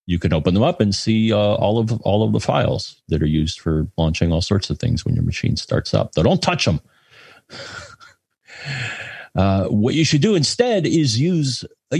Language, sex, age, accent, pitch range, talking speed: English, male, 40-59, American, 90-125 Hz, 205 wpm